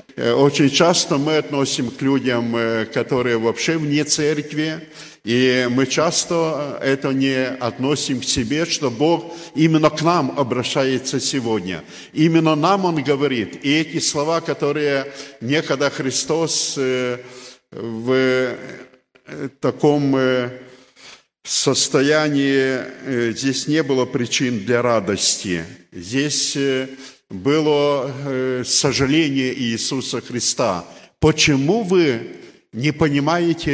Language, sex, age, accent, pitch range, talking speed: Russian, male, 50-69, native, 125-150 Hz, 95 wpm